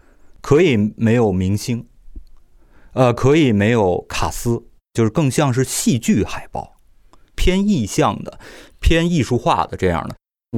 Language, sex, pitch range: Chinese, male, 110-155 Hz